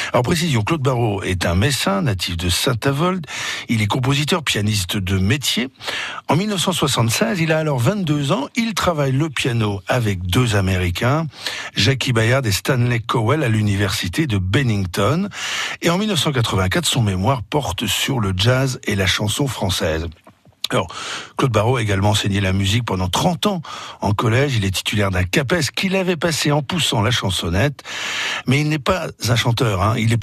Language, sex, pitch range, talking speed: French, male, 105-140 Hz, 170 wpm